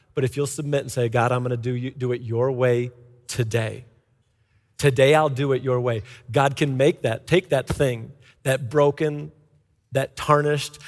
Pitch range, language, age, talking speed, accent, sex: 115-155 Hz, English, 40-59, 180 wpm, American, male